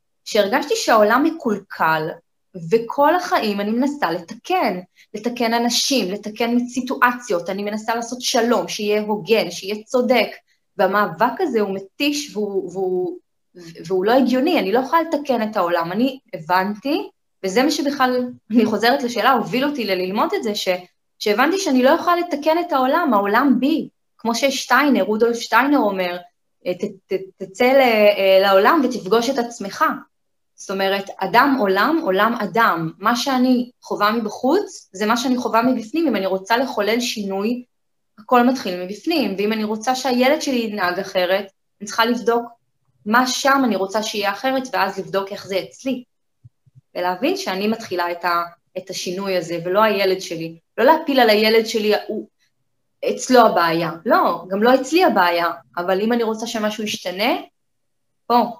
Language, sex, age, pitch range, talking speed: Hebrew, female, 20-39, 195-255 Hz, 150 wpm